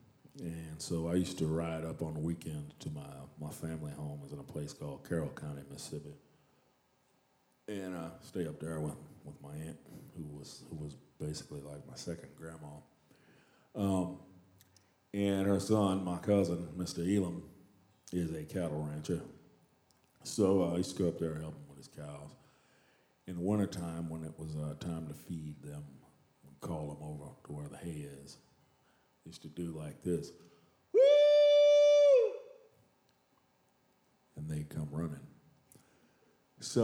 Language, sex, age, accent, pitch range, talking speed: English, male, 40-59, American, 75-95 Hz, 160 wpm